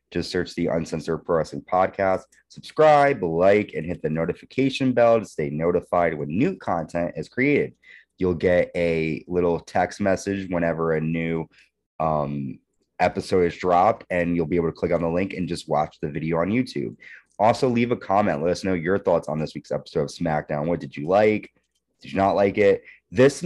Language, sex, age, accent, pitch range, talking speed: English, male, 20-39, American, 85-110 Hz, 190 wpm